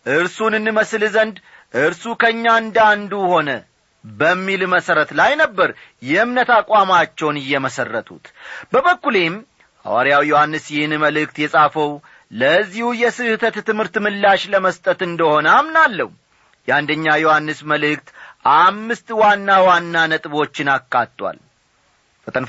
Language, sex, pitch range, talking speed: Amharic, male, 150-220 Hz, 95 wpm